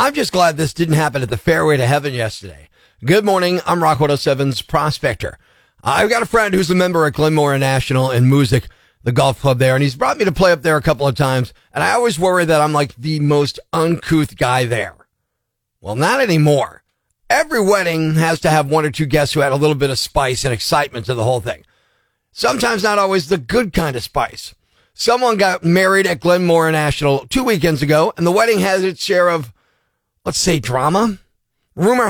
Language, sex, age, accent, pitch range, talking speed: English, male, 40-59, American, 145-205 Hz, 210 wpm